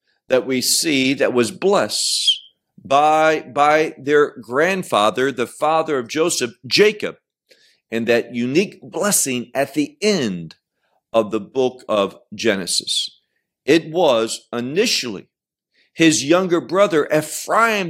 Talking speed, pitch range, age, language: 115 wpm, 125-180 Hz, 50-69, English